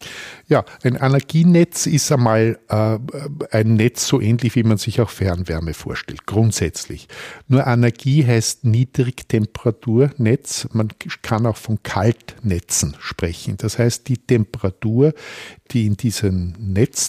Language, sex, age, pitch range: German, male, 50-69, 100-120 Hz